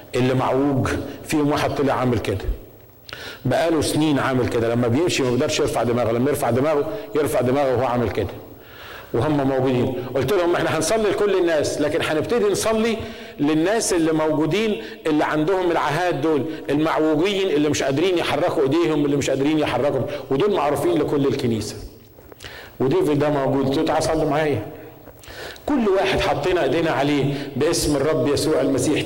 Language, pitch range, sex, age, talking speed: Arabic, 130-165 Hz, male, 50-69, 150 wpm